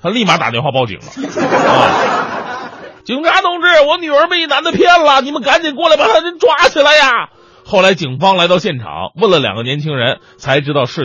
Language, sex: Chinese, male